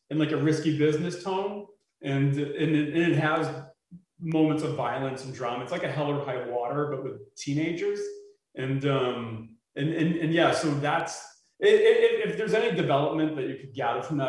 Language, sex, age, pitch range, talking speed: English, male, 30-49, 130-155 Hz, 185 wpm